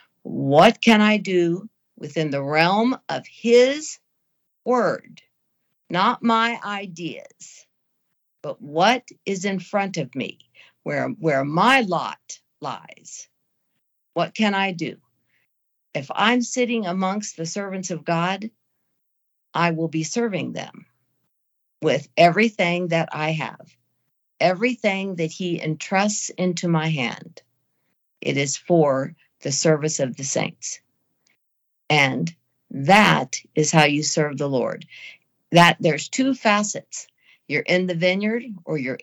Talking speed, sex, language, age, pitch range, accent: 125 wpm, female, English, 50-69, 150-200 Hz, American